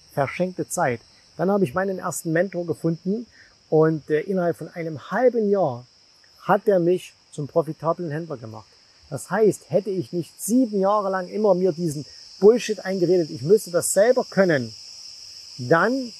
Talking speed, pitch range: 150 wpm, 155-210 Hz